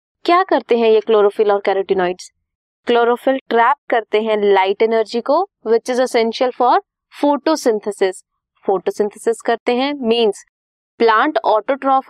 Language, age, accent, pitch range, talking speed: Hindi, 20-39, native, 205-265 Hz, 125 wpm